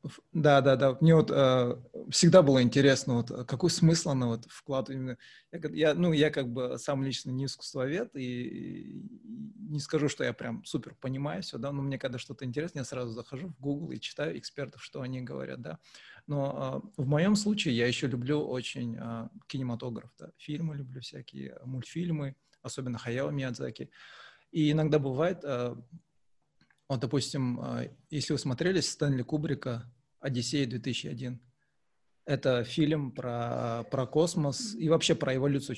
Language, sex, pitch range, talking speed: Russian, male, 125-155 Hz, 160 wpm